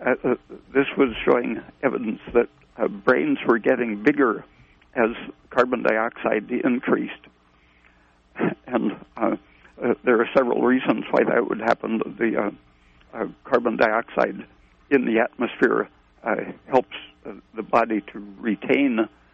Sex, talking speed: male, 130 wpm